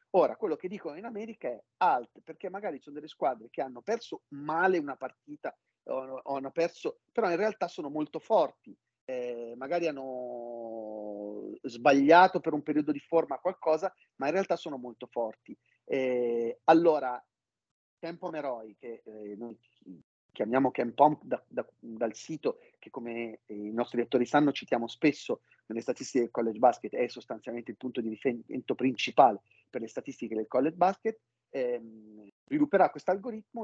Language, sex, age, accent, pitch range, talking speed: Italian, male, 40-59, native, 120-165 Hz, 155 wpm